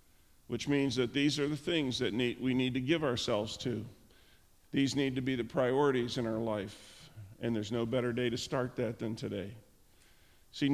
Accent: American